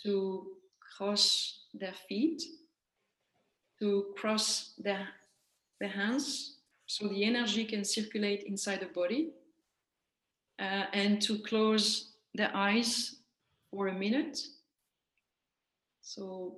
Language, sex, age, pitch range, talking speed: English, female, 40-59, 190-230 Hz, 100 wpm